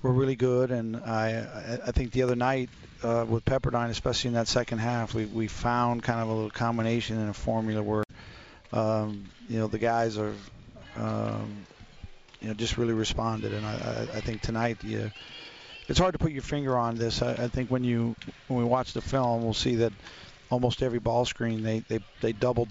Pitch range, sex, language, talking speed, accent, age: 110-120 Hz, male, English, 210 wpm, American, 40-59